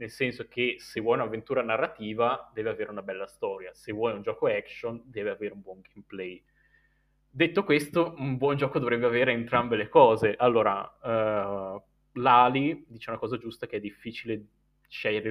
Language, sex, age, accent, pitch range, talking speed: Italian, male, 20-39, native, 110-135 Hz, 165 wpm